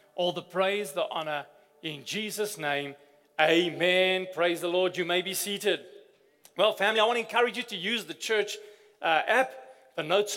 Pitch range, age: 175-225 Hz, 40-59